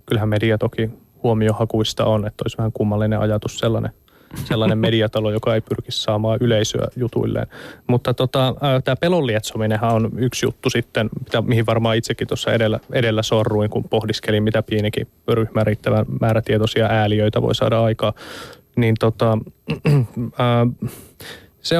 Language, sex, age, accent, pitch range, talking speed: Finnish, male, 20-39, native, 110-120 Hz, 135 wpm